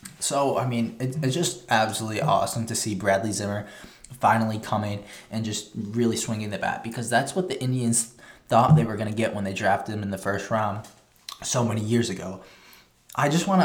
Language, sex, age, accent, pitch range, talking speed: English, male, 20-39, American, 110-130 Hz, 200 wpm